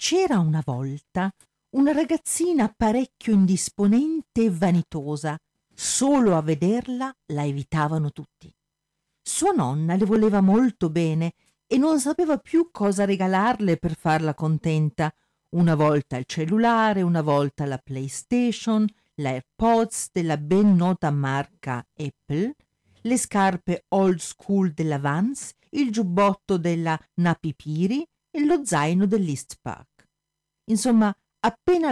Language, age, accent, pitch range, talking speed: Italian, 50-69, native, 160-235 Hz, 115 wpm